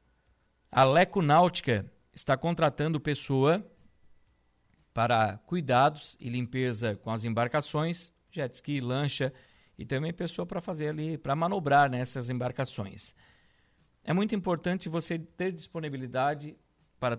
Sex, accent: male, Brazilian